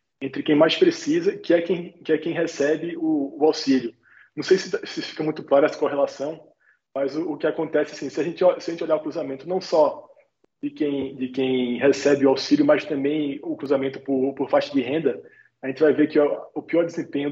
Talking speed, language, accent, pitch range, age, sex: 225 wpm, Portuguese, Brazilian, 140-180 Hz, 20-39, male